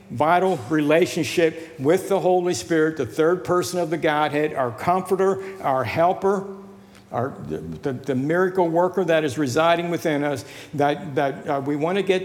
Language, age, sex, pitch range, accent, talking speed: English, 60-79, male, 135-170 Hz, American, 160 wpm